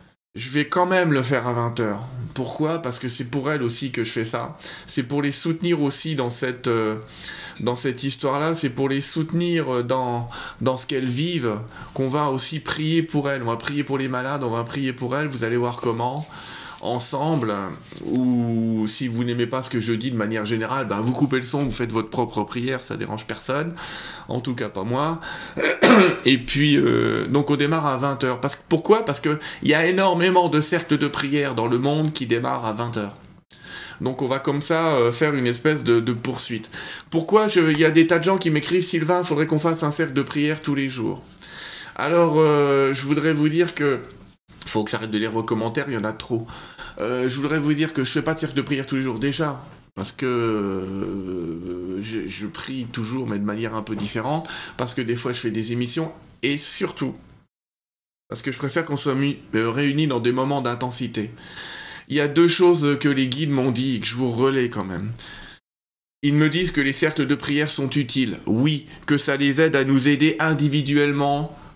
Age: 20-39